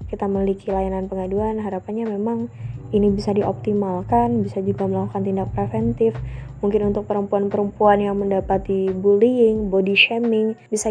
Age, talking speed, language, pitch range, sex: 20-39, 125 wpm, Indonesian, 200-220 Hz, female